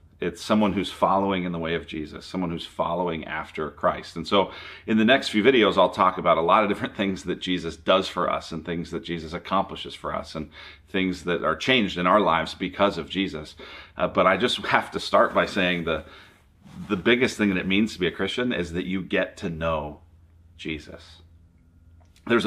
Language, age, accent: English, 40-59, American